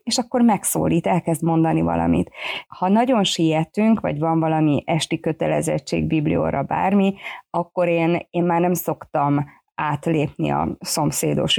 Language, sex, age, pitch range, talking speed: Hungarian, female, 30-49, 160-195 Hz, 130 wpm